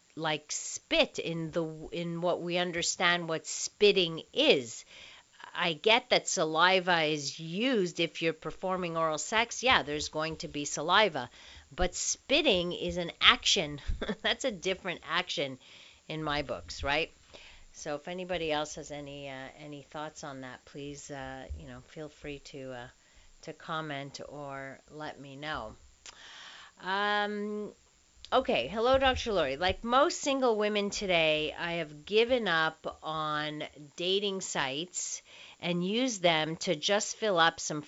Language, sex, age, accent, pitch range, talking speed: English, female, 50-69, American, 150-200 Hz, 145 wpm